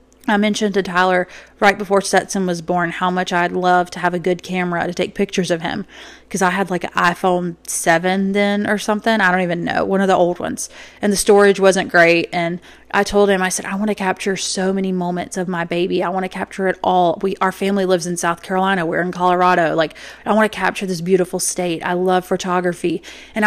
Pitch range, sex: 180-195 Hz, female